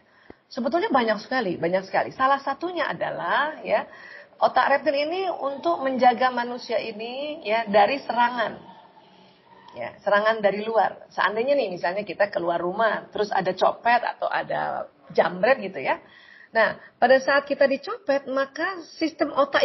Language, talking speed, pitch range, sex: Indonesian, 135 wpm, 225-305 Hz, female